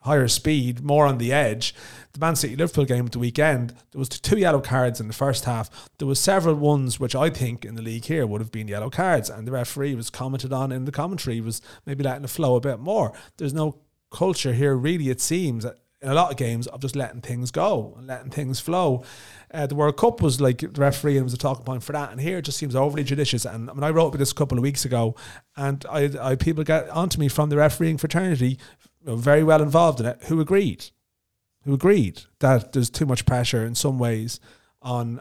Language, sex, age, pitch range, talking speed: English, male, 30-49, 120-145 Hz, 235 wpm